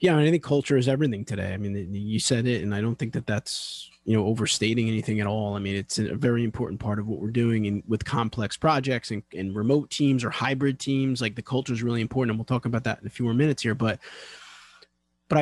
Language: English